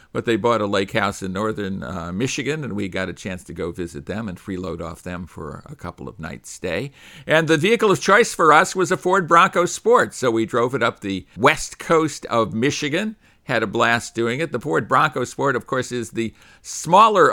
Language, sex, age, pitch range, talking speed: English, male, 50-69, 100-145 Hz, 225 wpm